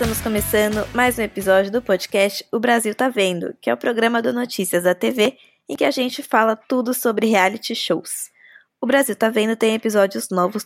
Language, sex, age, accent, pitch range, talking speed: Portuguese, female, 20-39, Brazilian, 190-250 Hz, 195 wpm